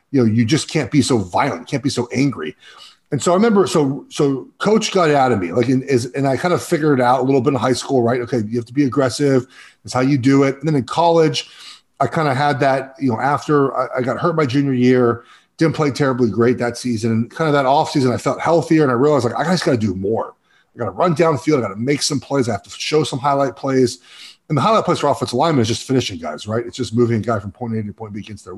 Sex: male